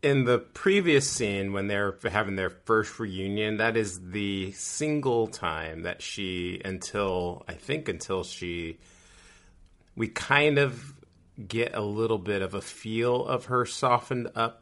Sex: male